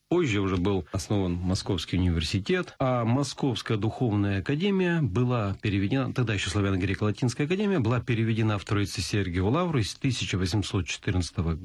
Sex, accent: male, native